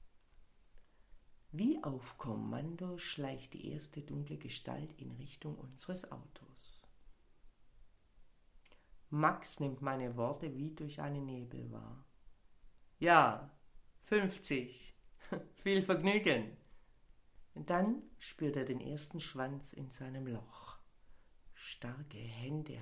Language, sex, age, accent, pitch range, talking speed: German, female, 60-79, German, 115-155 Hz, 95 wpm